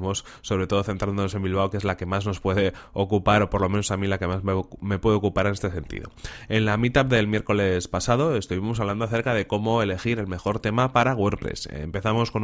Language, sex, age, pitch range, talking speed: Spanish, male, 20-39, 95-115 Hz, 230 wpm